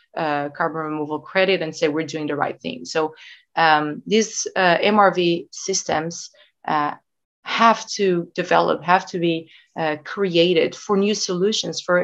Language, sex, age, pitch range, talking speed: English, female, 30-49, 160-185 Hz, 150 wpm